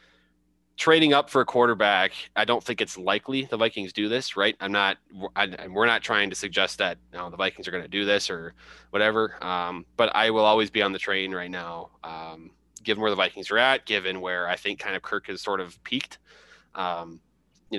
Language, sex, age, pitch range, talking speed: English, male, 20-39, 90-110 Hz, 225 wpm